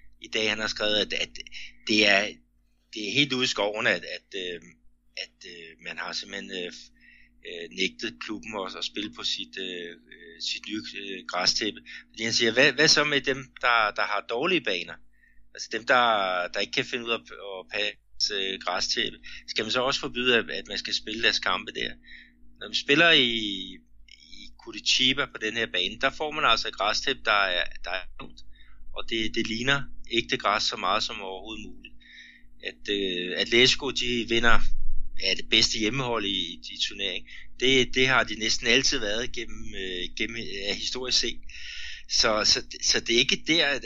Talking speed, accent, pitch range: 170 wpm, native, 90-125 Hz